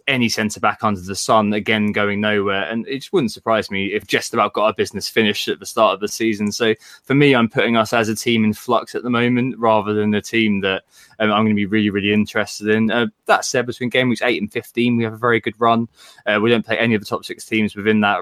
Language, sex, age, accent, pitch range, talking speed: English, male, 20-39, British, 100-110 Hz, 265 wpm